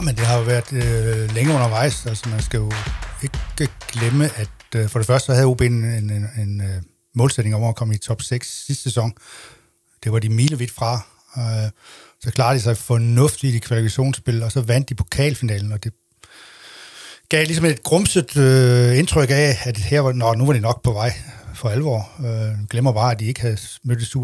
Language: Danish